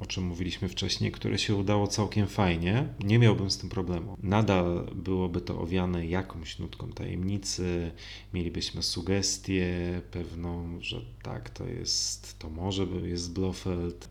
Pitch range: 90-105 Hz